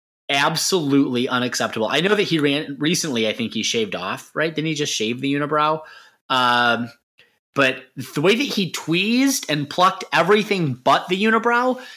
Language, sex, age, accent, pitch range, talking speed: English, male, 30-49, American, 130-195 Hz, 165 wpm